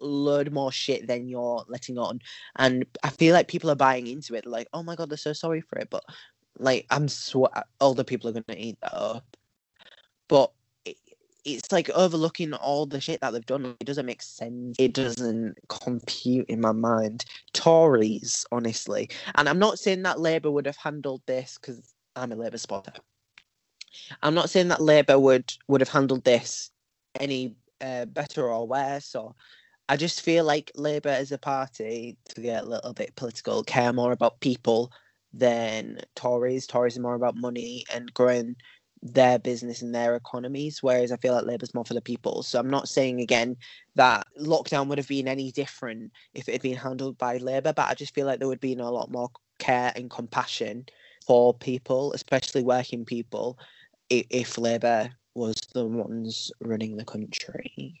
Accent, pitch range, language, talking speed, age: British, 120-140 Hz, English, 185 wpm, 20-39